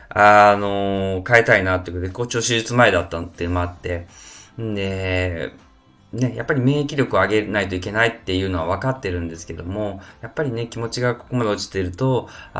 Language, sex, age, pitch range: Japanese, male, 20-39, 90-110 Hz